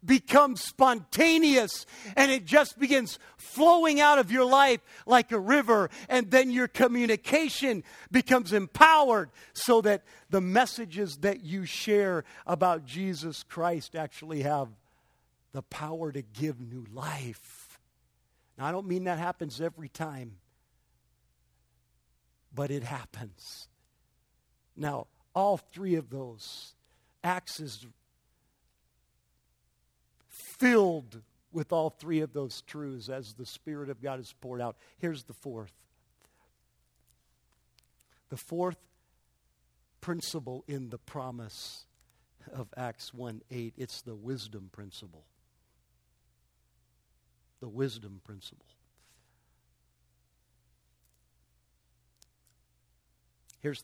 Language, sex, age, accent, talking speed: English, male, 50-69, American, 100 wpm